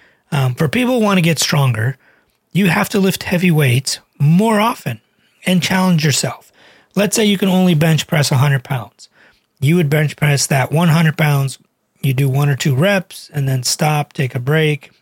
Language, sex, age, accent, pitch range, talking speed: English, male, 30-49, American, 135-175 Hz, 190 wpm